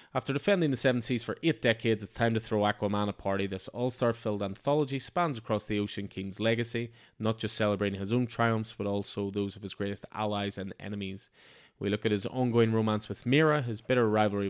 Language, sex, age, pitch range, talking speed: English, male, 20-39, 100-120 Hz, 205 wpm